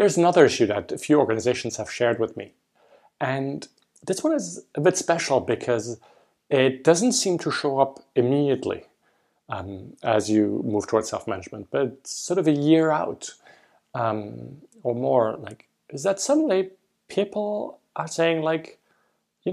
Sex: male